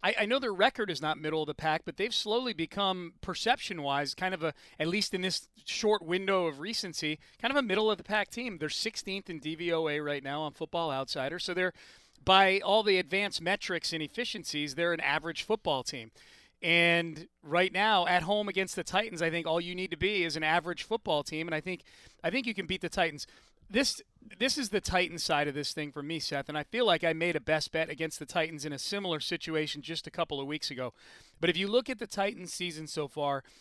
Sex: male